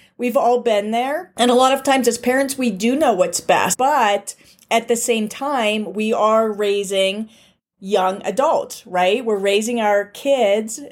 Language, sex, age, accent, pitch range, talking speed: English, female, 40-59, American, 200-245 Hz, 170 wpm